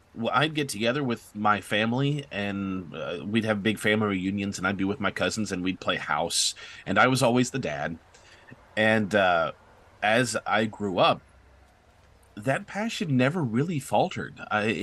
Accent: American